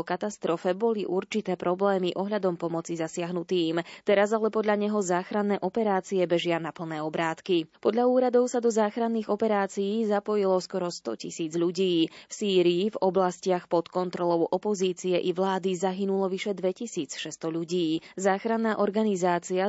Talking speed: 130 wpm